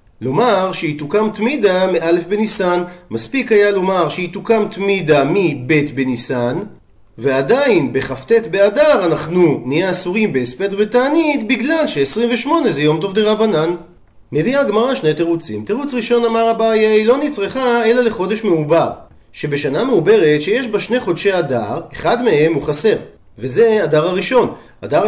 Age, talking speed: 40-59, 140 wpm